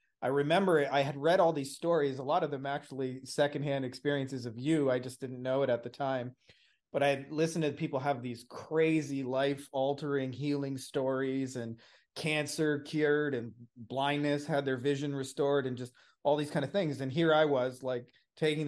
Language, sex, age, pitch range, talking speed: English, male, 30-49, 130-150 Hz, 195 wpm